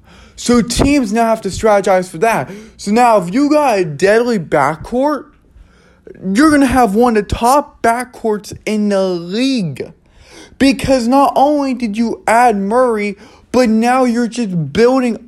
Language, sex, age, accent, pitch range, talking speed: English, male, 20-39, American, 200-240 Hz, 155 wpm